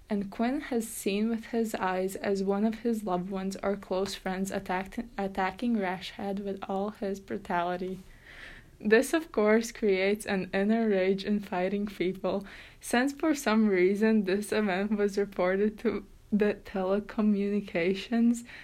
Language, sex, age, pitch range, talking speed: English, female, 20-39, 190-220 Hz, 140 wpm